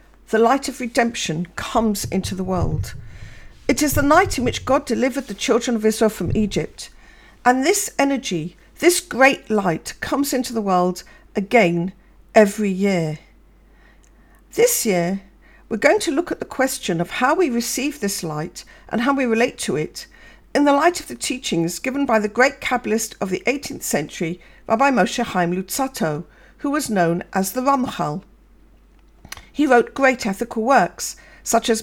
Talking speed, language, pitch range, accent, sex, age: 165 wpm, English, 190-275 Hz, British, female, 50-69